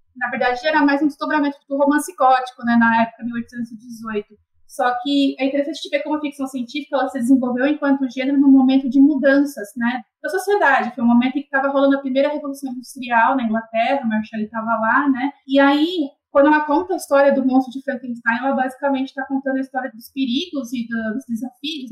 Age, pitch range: 20-39, 240-280 Hz